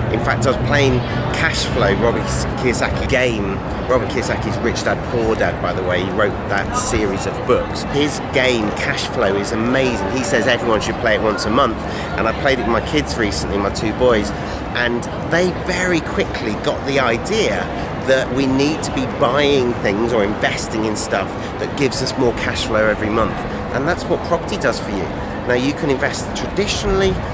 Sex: male